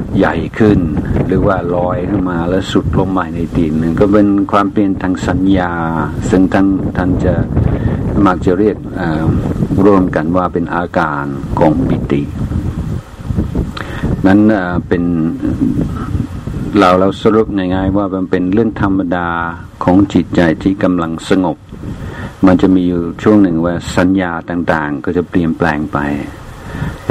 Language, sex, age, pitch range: Thai, male, 60-79, 85-100 Hz